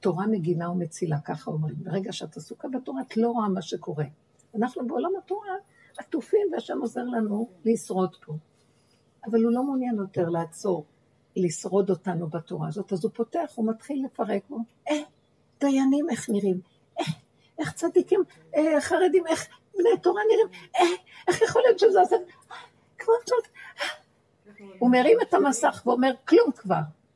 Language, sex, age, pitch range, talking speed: Hebrew, female, 60-79, 190-265 Hz, 145 wpm